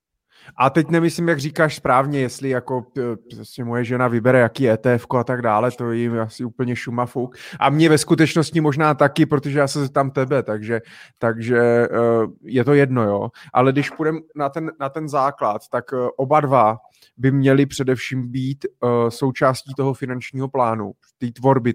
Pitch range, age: 120-145 Hz, 20-39